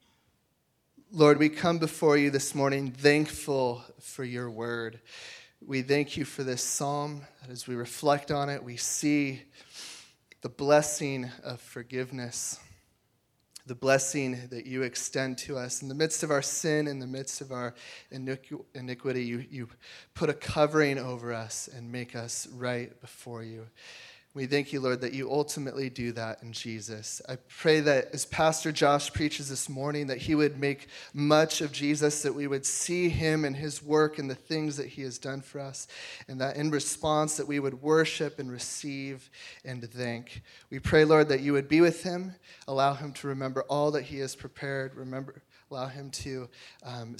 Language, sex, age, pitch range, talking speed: English, male, 20-39, 125-150 Hz, 175 wpm